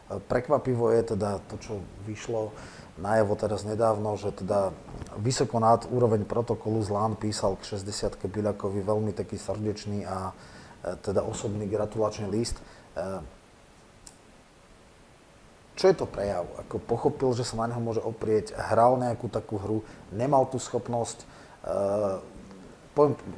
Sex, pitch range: male, 100-120 Hz